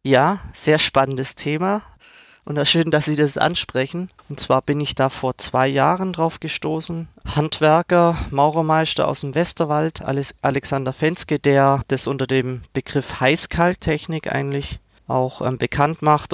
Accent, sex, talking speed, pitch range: German, male, 140 wpm, 130-155 Hz